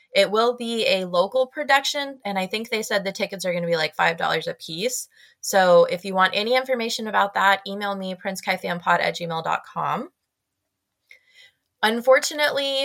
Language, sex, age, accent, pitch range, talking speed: English, female, 20-39, American, 180-255 Hz, 165 wpm